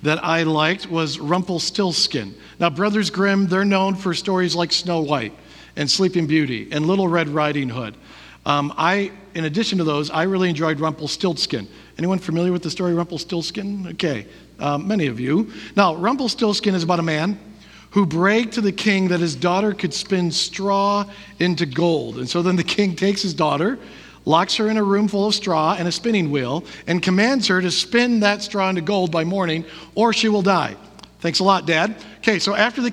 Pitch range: 165-205 Hz